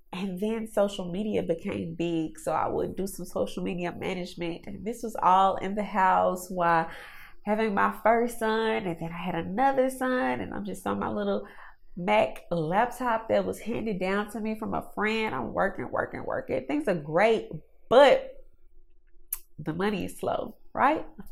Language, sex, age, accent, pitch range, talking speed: English, female, 20-39, American, 180-260 Hz, 175 wpm